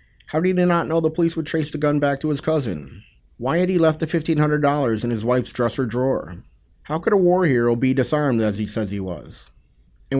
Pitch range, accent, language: 105-135 Hz, American, English